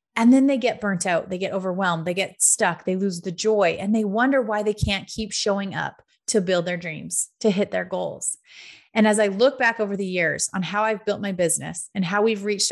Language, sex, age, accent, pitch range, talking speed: English, female, 30-49, American, 185-230 Hz, 240 wpm